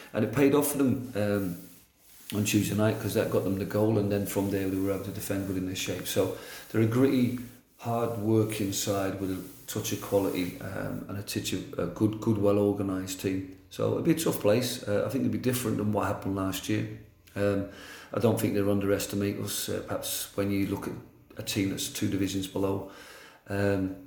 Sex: male